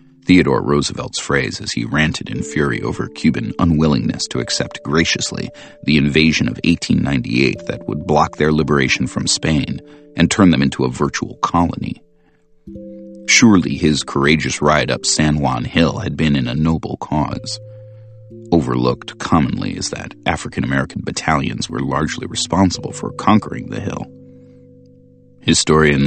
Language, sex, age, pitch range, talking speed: Hindi, male, 40-59, 75-125 Hz, 140 wpm